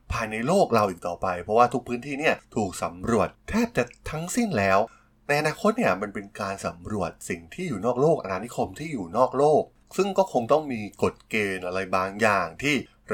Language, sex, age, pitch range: Thai, male, 20-39, 95-130 Hz